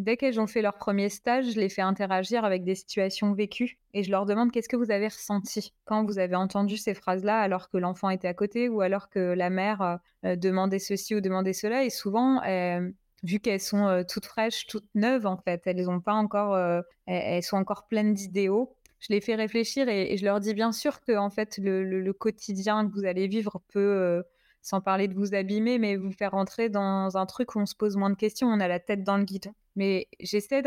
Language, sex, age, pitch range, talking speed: French, female, 20-39, 190-220 Hz, 240 wpm